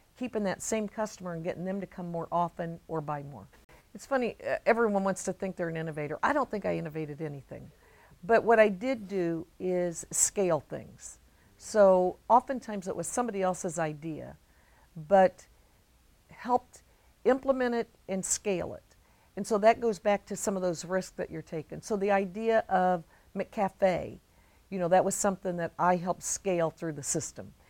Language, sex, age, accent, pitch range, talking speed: English, female, 50-69, American, 165-215 Hz, 175 wpm